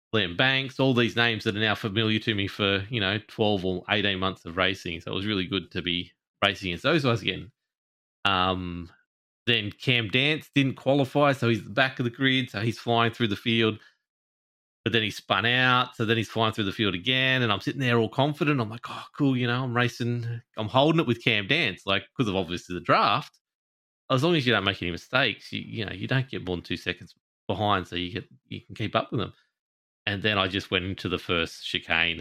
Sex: male